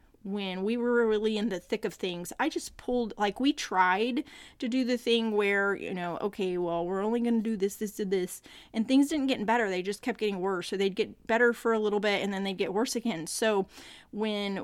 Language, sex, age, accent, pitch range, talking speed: English, female, 30-49, American, 190-235 Hz, 240 wpm